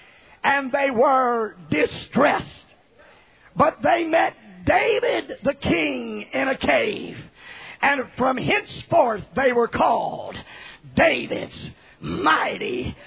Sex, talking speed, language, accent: male, 95 wpm, English, American